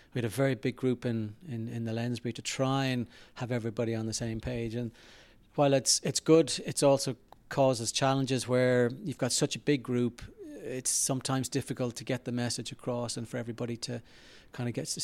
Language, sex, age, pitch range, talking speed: English, male, 30-49, 115-130 Hz, 210 wpm